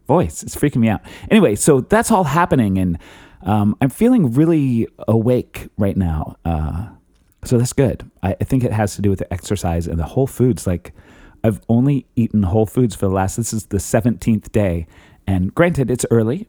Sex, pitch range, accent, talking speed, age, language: male, 90-120 Hz, American, 195 wpm, 30-49, English